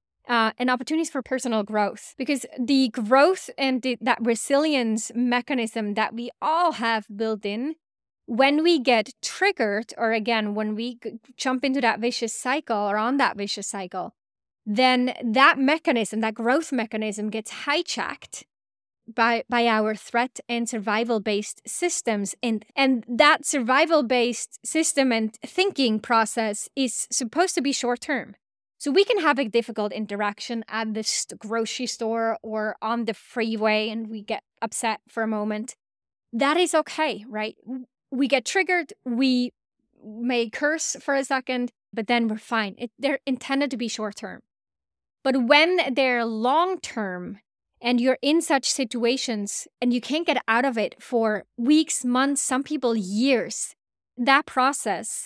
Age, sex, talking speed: 20-39, female, 145 wpm